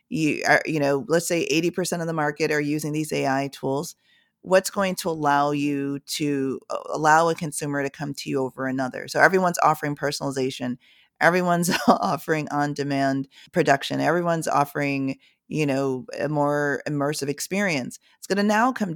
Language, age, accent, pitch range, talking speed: English, 30-49, American, 140-160 Hz, 160 wpm